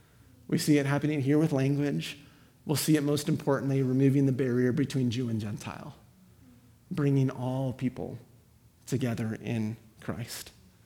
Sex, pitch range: male, 120-145 Hz